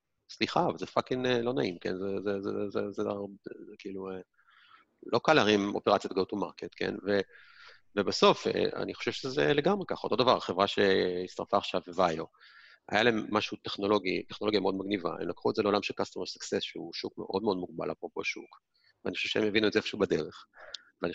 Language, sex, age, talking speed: Hebrew, male, 30-49, 195 wpm